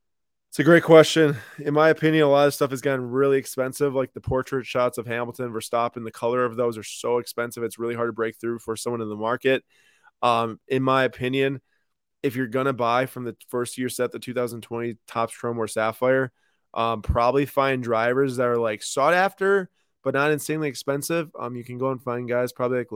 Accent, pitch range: American, 110-130 Hz